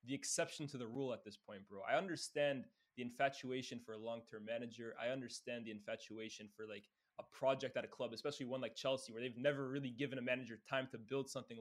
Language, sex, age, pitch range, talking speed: English, male, 20-39, 125-170 Hz, 220 wpm